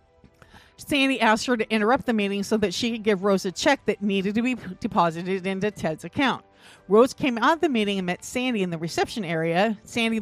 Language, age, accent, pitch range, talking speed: English, 40-59, American, 185-240 Hz, 215 wpm